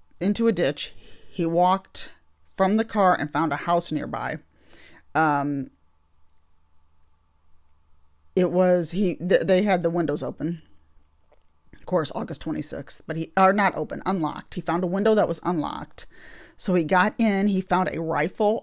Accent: American